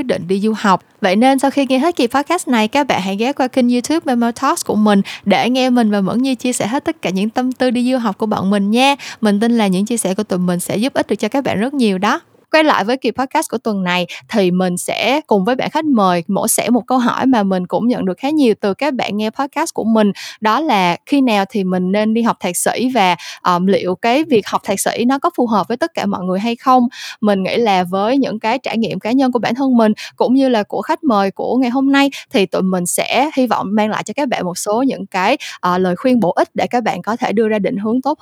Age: 20-39